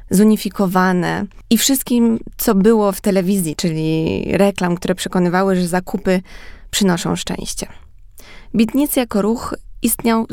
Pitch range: 175-210 Hz